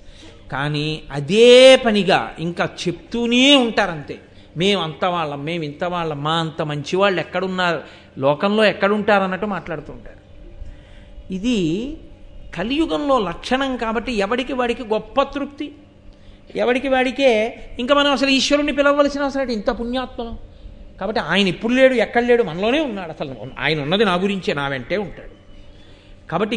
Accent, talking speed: native, 120 wpm